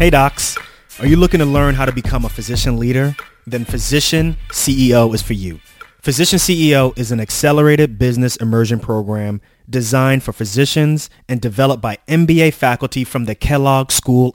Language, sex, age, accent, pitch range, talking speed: English, male, 30-49, American, 115-135 Hz, 165 wpm